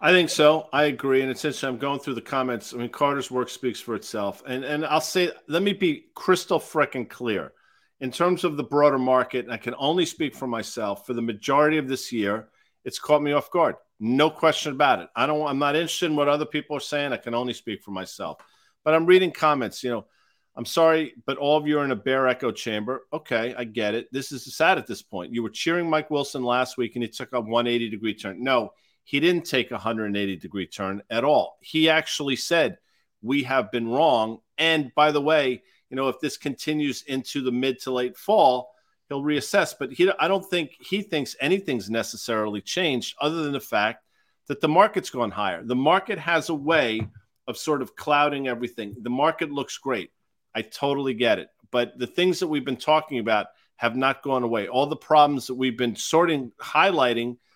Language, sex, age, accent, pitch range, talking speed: English, male, 50-69, American, 120-150 Hz, 215 wpm